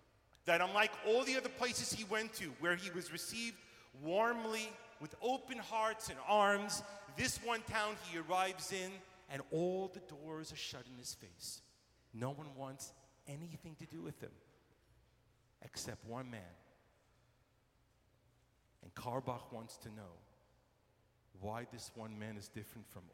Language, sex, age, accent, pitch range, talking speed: English, male, 40-59, American, 115-160 Hz, 150 wpm